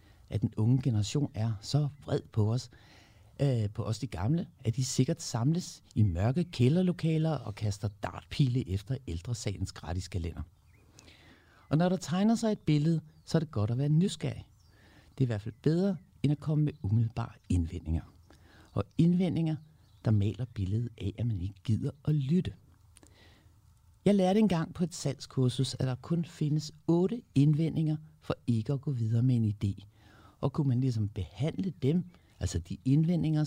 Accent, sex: native, male